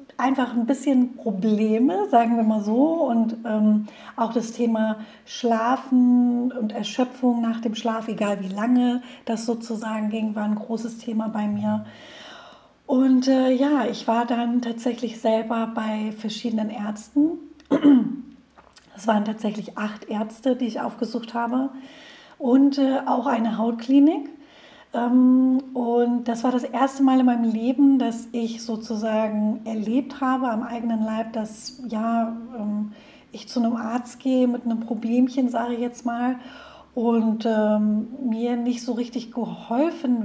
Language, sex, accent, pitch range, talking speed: German, female, German, 220-255 Hz, 140 wpm